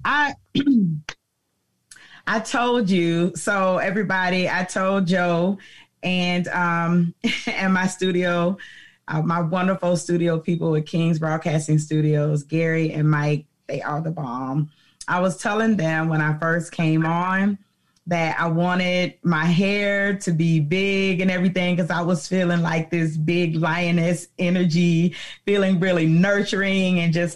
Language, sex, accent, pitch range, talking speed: English, female, American, 155-185 Hz, 140 wpm